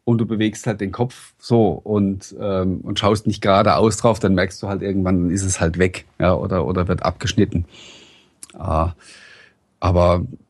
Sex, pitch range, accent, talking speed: male, 95-120 Hz, German, 185 wpm